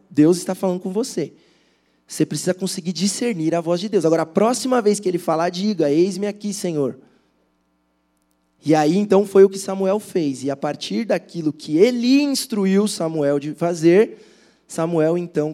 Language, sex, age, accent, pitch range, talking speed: Portuguese, male, 20-39, Brazilian, 160-220 Hz, 170 wpm